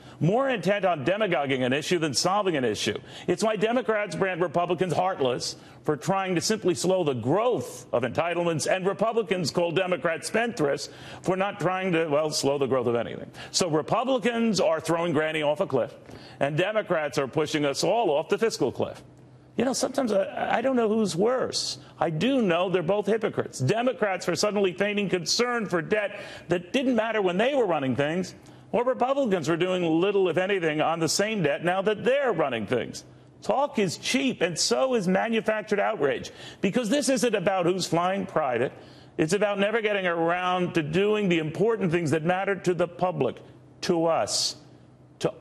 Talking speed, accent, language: 180 wpm, American, English